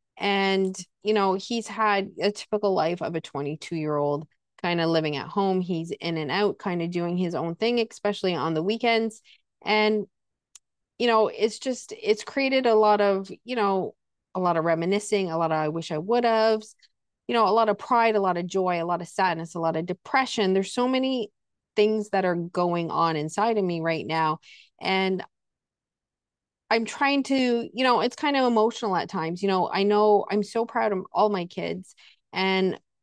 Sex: female